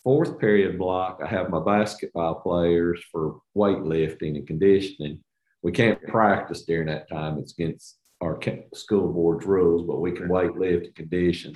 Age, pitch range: 50-69, 90-105 Hz